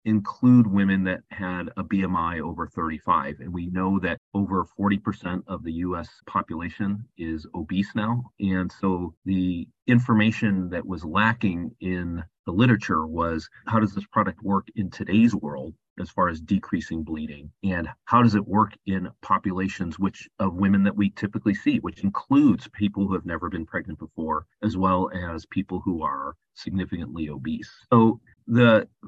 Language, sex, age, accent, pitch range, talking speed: English, male, 40-59, American, 90-105 Hz, 160 wpm